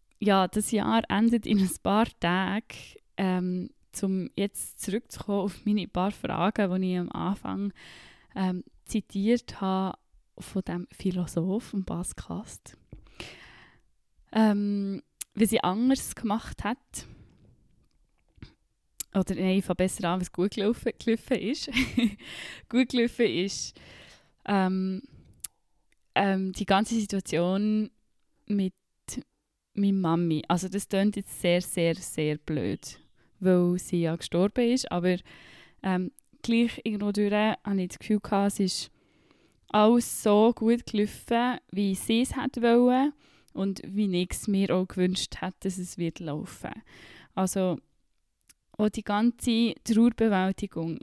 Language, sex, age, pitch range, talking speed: German, female, 10-29, 185-220 Hz, 120 wpm